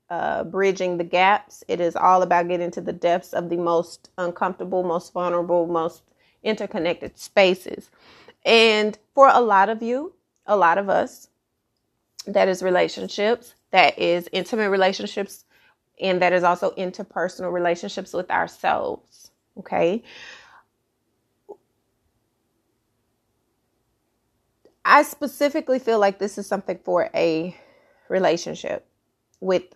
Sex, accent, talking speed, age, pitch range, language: female, American, 115 wpm, 30-49, 160-200 Hz, English